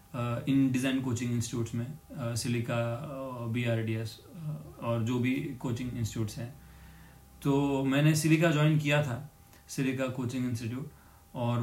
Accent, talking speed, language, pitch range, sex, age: native, 135 wpm, Hindi, 125-145 Hz, male, 30-49